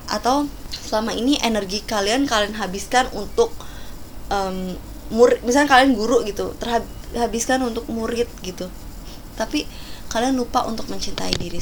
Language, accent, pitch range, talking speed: Indonesian, native, 210-255 Hz, 125 wpm